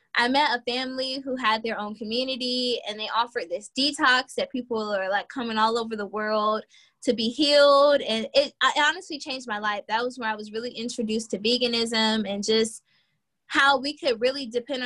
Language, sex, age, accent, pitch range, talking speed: English, female, 10-29, American, 215-265 Hz, 200 wpm